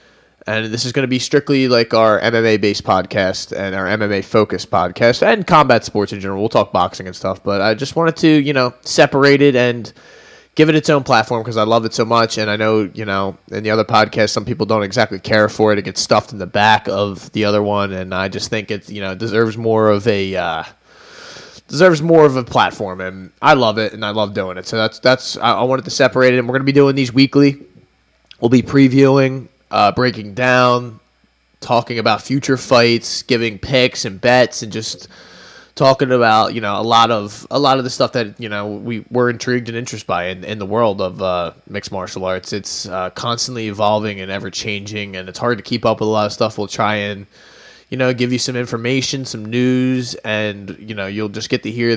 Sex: male